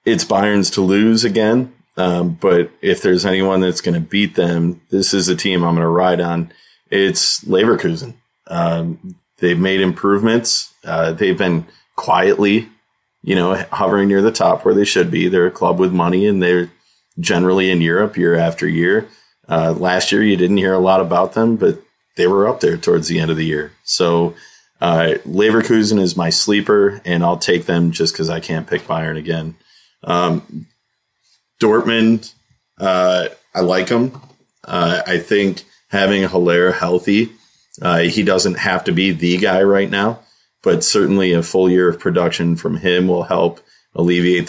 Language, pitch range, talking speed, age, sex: English, 85-100 Hz, 175 wpm, 30-49, male